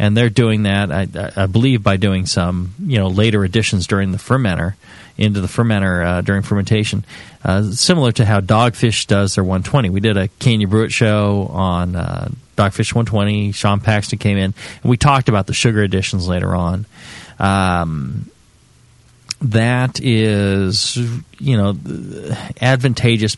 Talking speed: 155 wpm